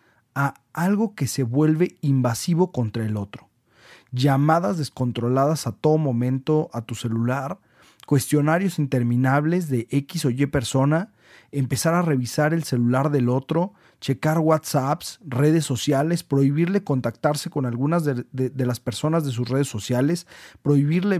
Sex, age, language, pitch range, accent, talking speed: male, 40-59, Spanish, 130-170 Hz, Mexican, 140 wpm